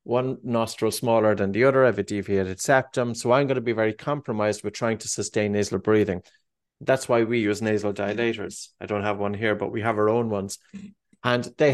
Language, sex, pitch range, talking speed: English, male, 105-130 Hz, 220 wpm